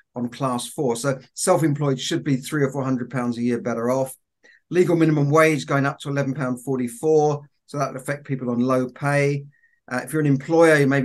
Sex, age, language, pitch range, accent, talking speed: male, 50-69, English, 130-150 Hz, British, 205 wpm